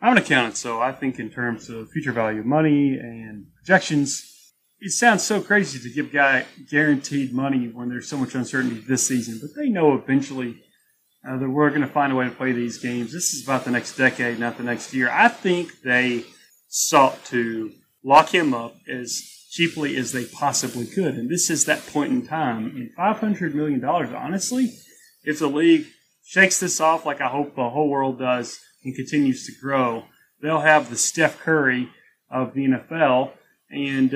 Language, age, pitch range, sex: English, 30-49, 125-155 Hz, male